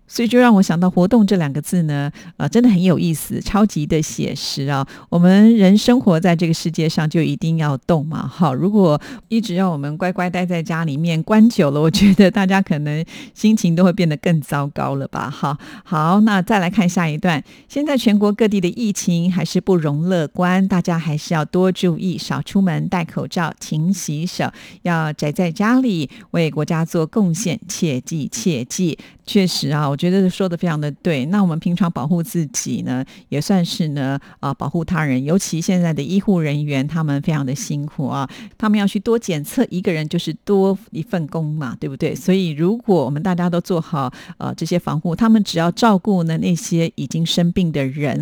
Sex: female